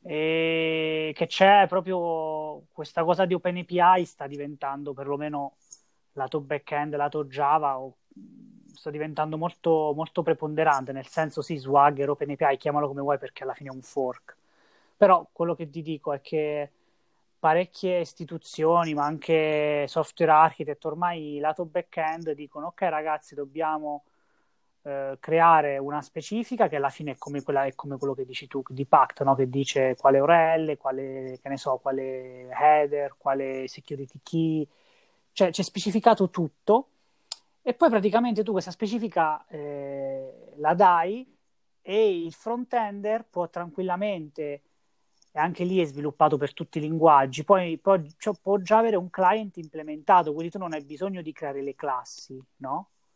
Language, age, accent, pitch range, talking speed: Italian, 20-39, native, 145-180 Hz, 150 wpm